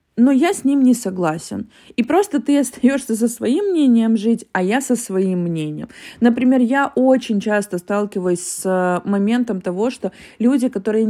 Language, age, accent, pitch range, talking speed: Russian, 20-39, native, 195-255 Hz, 160 wpm